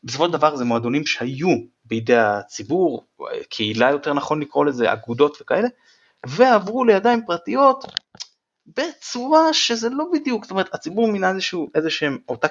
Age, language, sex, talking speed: 30-49, Hebrew, male, 135 wpm